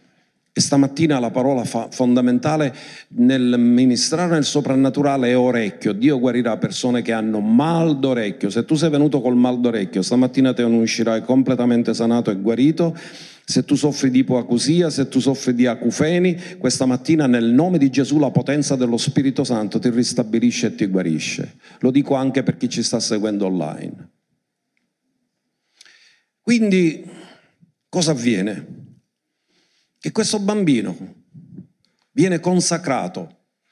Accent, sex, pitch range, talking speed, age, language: native, male, 125-165 Hz, 135 wpm, 50-69, Italian